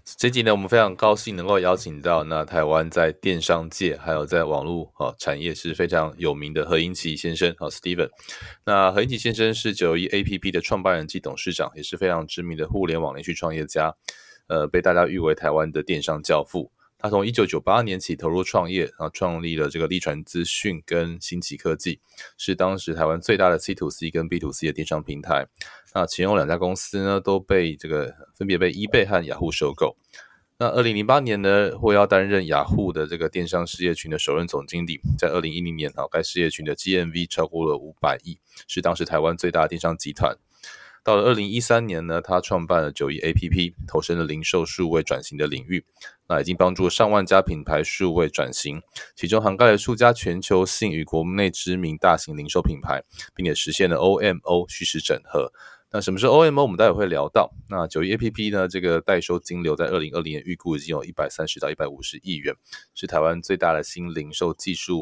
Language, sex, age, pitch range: Chinese, male, 20-39, 80-100 Hz